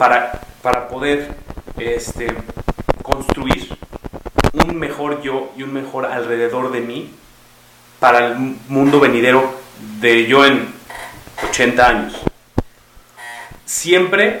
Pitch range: 120-155 Hz